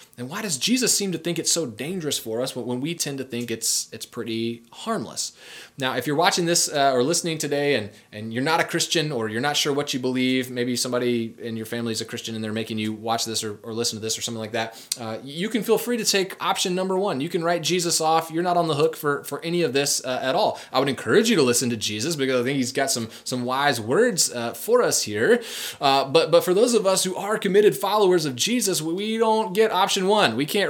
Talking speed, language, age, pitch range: 265 wpm, English, 20-39, 115-165 Hz